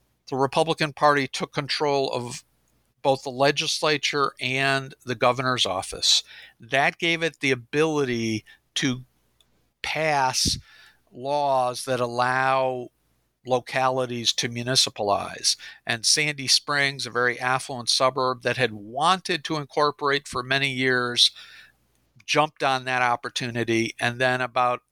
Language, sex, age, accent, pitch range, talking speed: English, male, 50-69, American, 125-145 Hz, 115 wpm